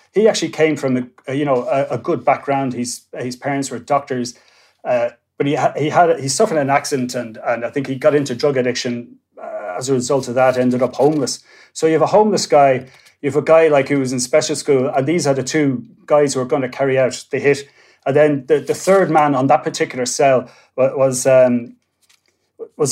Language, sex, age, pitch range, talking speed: English, male, 30-49, 130-155 Hz, 230 wpm